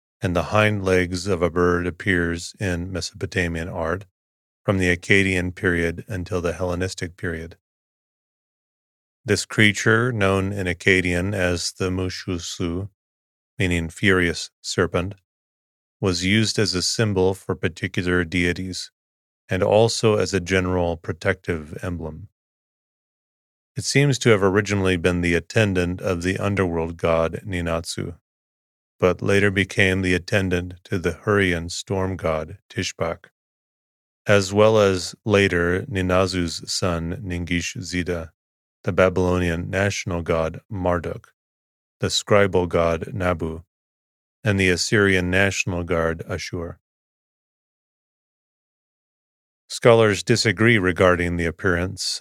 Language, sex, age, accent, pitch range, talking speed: English, male, 30-49, American, 85-100 Hz, 110 wpm